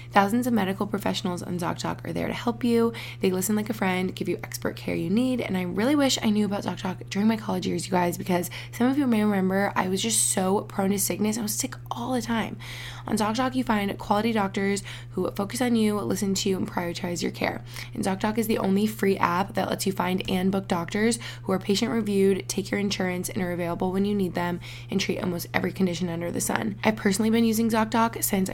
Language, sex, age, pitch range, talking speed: English, female, 20-39, 175-215 Hz, 240 wpm